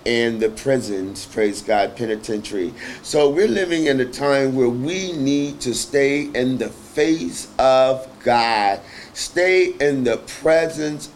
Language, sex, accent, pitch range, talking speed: English, male, American, 125-165 Hz, 140 wpm